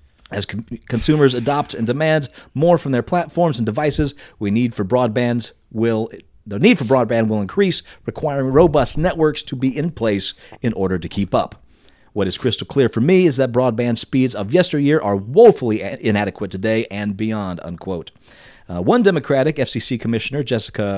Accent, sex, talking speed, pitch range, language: American, male, 170 wpm, 110-145 Hz, English